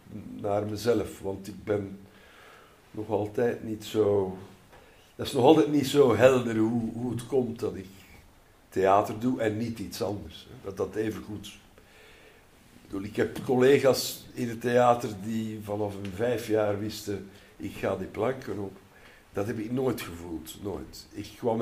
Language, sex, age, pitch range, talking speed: Dutch, male, 60-79, 100-125 Hz, 165 wpm